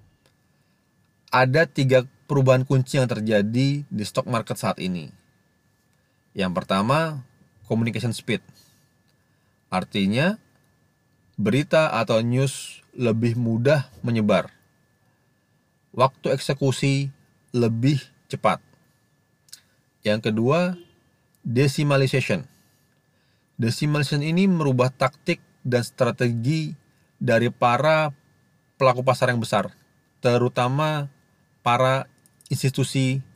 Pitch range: 115-145 Hz